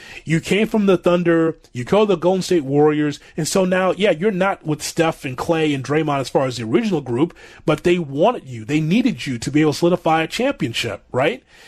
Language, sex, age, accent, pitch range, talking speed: English, male, 30-49, American, 145-190 Hz, 230 wpm